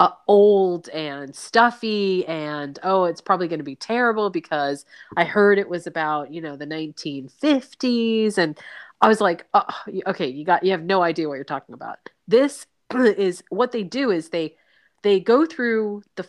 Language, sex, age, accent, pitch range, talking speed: English, female, 30-49, American, 165-210 Hz, 175 wpm